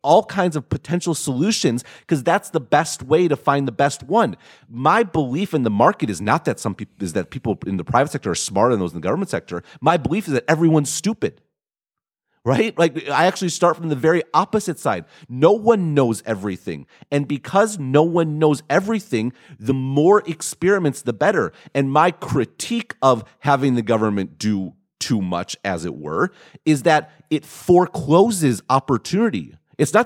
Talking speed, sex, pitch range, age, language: 180 wpm, male, 135-180 Hz, 40-59, English